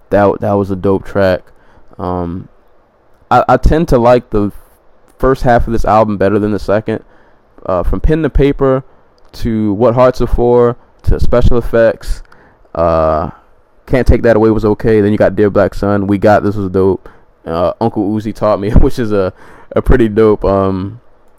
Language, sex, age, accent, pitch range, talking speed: English, male, 20-39, American, 90-105 Hz, 180 wpm